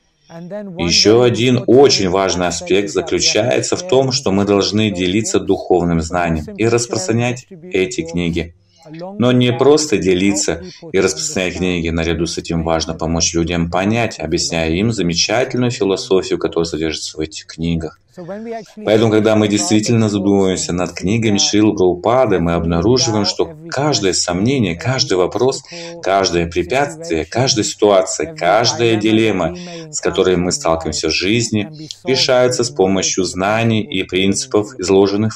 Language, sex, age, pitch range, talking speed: Russian, male, 30-49, 90-125 Hz, 130 wpm